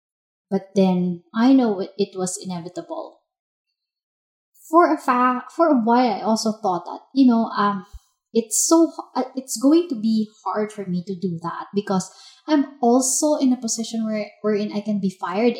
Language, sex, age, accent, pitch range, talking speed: English, female, 20-39, Filipino, 190-265 Hz, 175 wpm